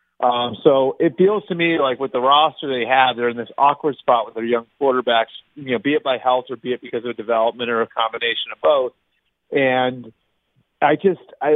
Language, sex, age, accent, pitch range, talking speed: English, male, 40-59, American, 115-145 Hz, 220 wpm